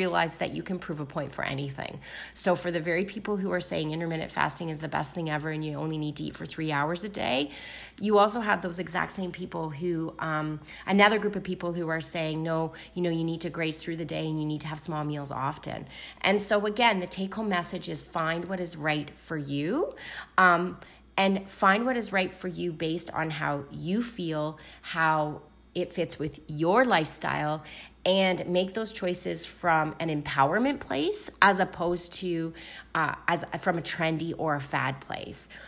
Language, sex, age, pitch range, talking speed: English, female, 30-49, 160-200 Hz, 200 wpm